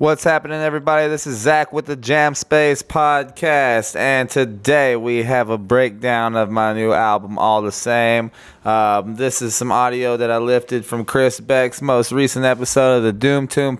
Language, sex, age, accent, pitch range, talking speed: English, male, 20-39, American, 105-125 Hz, 185 wpm